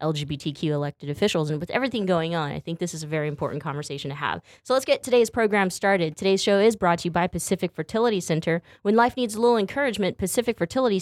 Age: 20-39